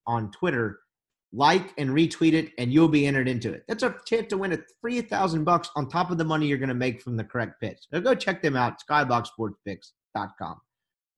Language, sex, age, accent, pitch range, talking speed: English, male, 30-49, American, 125-175 Hz, 210 wpm